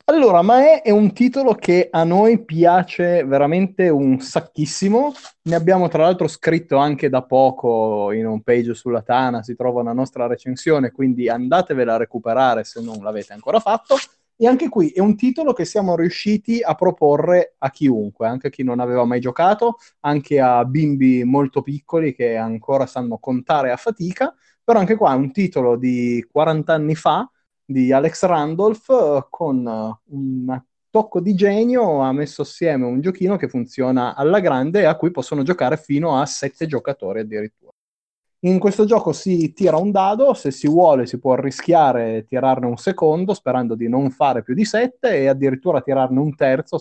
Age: 20-39